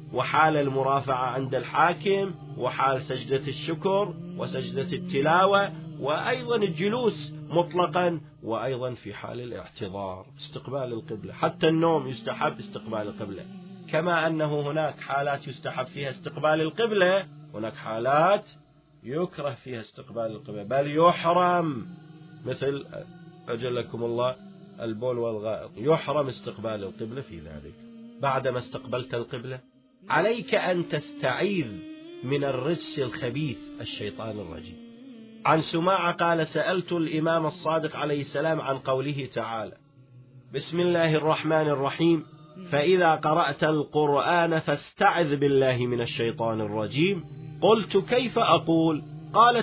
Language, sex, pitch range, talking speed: Arabic, male, 130-170 Hz, 105 wpm